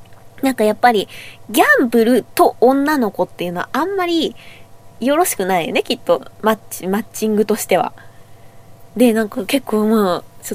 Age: 20-39